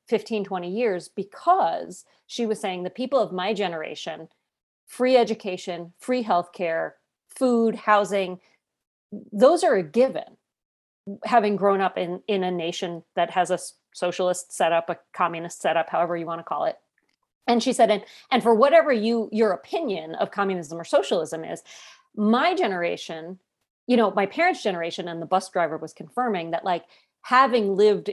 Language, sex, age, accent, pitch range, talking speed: English, female, 40-59, American, 175-220 Hz, 160 wpm